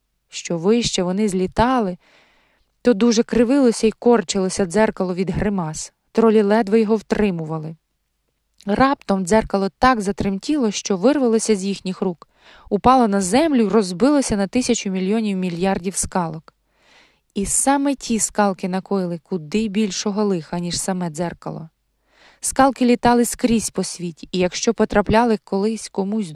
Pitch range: 185-230 Hz